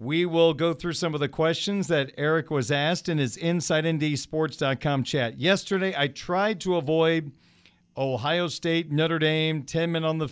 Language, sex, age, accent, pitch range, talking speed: English, male, 40-59, American, 145-175 Hz, 170 wpm